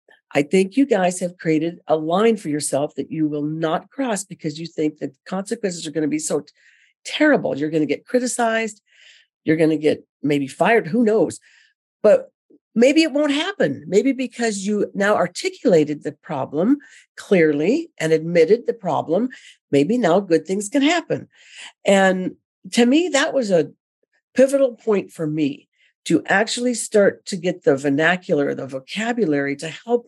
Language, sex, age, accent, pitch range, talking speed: English, female, 50-69, American, 160-245 Hz, 165 wpm